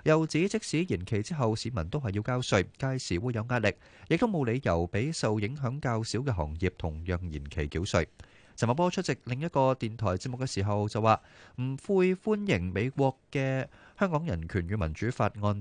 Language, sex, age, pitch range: Chinese, male, 30-49, 95-145 Hz